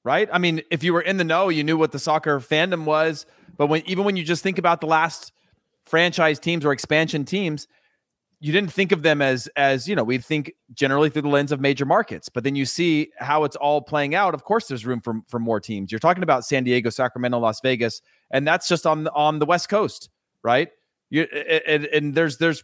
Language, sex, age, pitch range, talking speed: English, male, 30-49, 135-170 Hz, 235 wpm